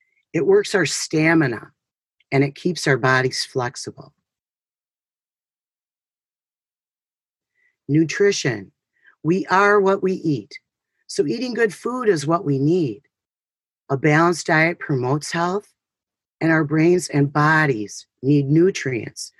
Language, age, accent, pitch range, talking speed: English, 40-59, American, 140-185 Hz, 110 wpm